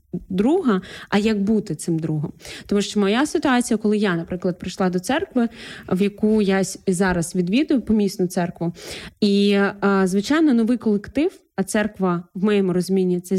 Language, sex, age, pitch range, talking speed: Ukrainian, female, 20-39, 190-225 Hz, 150 wpm